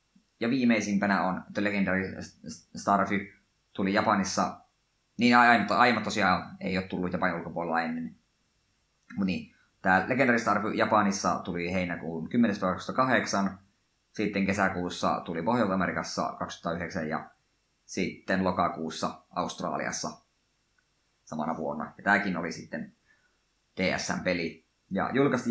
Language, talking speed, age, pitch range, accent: Finnish, 100 wpm, 20-39, 95-110 Hz, native